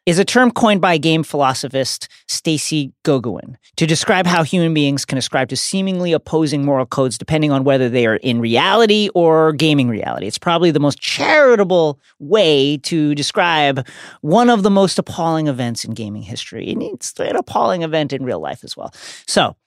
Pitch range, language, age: 125-170 Hz, English, 40-59